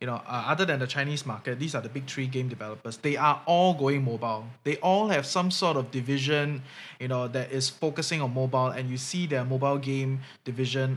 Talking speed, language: 225 wpm, English